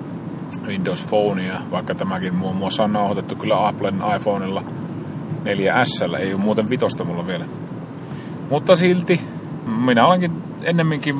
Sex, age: male, 30-49